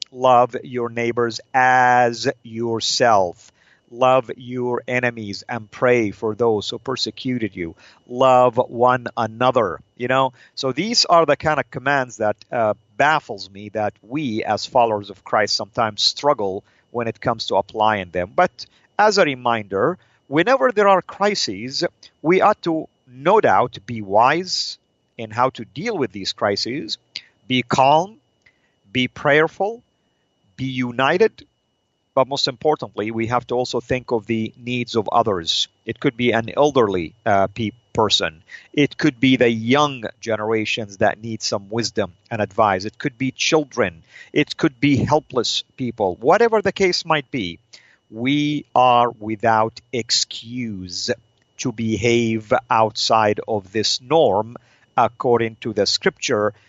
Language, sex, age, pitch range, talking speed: English, male, 50-69, 110-135 Hz, 140 wpm